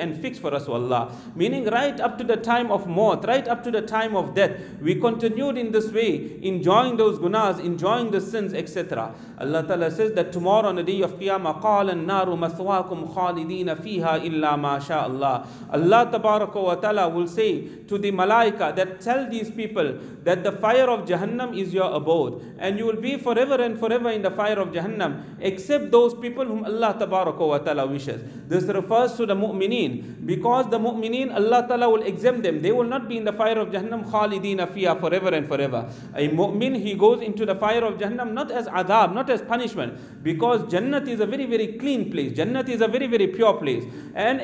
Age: 40-59